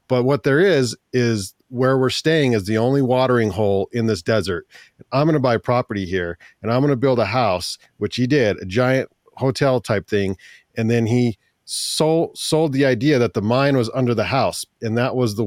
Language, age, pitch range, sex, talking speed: English, 40-59, 115-145 Hz, male, 205 wpm